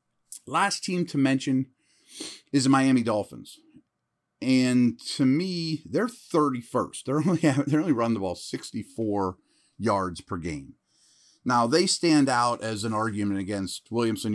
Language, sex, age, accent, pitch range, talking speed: English, male, 40-59, American, 100-140 Hz, 135 wpm